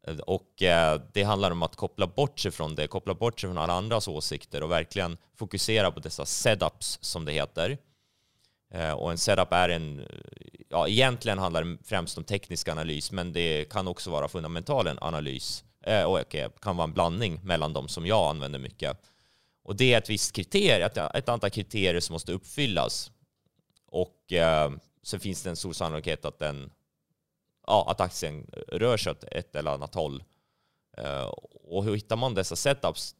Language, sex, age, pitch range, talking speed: Swedish, male, 30-49, 80-105 Hz, 170 wpm